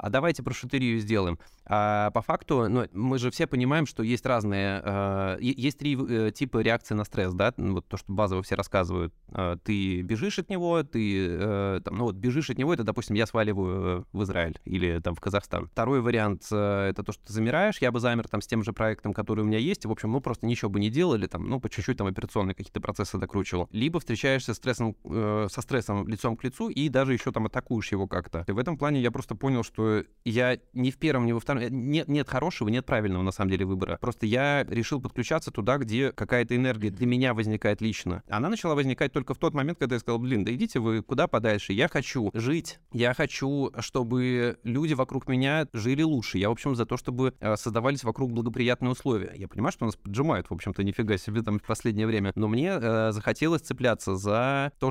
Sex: male